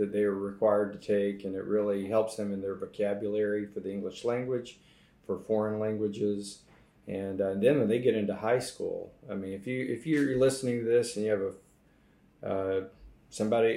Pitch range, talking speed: 100-110 Hz, 200 wpm